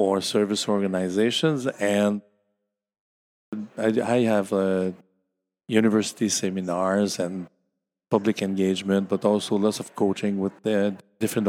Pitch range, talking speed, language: 95-115 Hz, 100 wpm, English